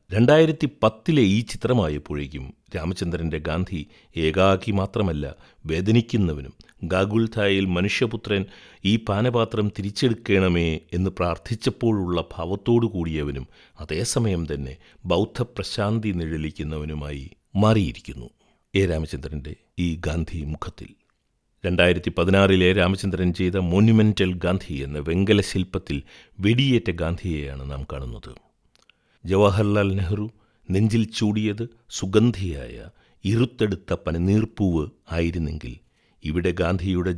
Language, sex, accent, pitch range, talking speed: Malayalam, male, native, 80-105 Hz, 85 wpm